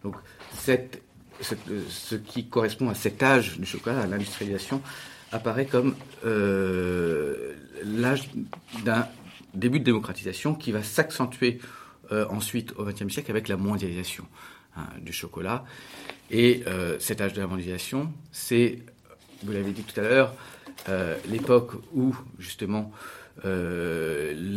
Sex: male